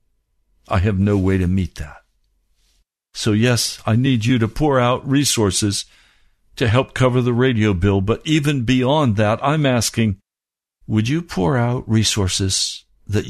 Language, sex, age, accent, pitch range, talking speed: English, male, 60-79, American, 95-115 Hz, 155 wpm